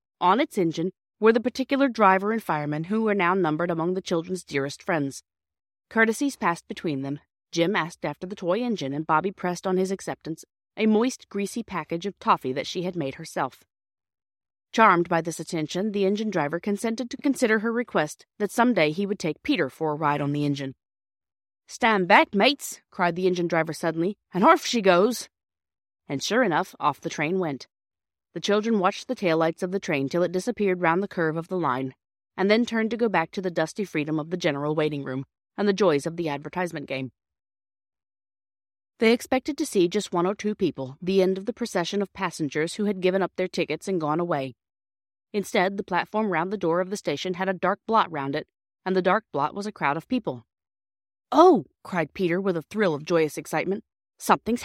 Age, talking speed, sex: 30-49, 205 wpm, female